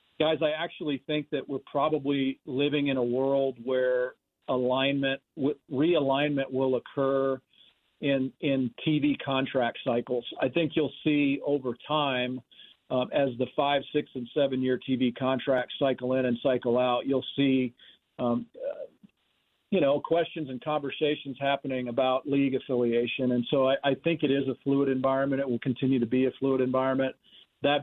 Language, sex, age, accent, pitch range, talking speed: English, male, 50-69, American, 130-145 Hz, 155 wpm